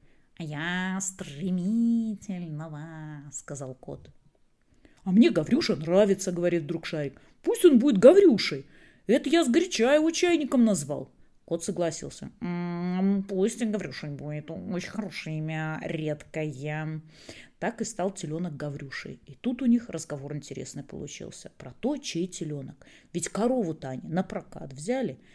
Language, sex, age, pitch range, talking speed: Russian, female, 30-49, 170-225 Hz, 140 wpm